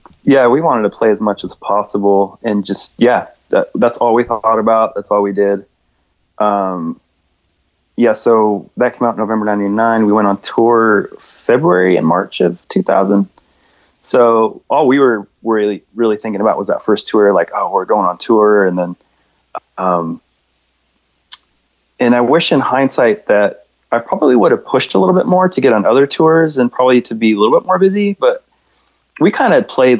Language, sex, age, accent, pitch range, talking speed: English, male, 20-39, American, 95-115 Hz, 185 wpm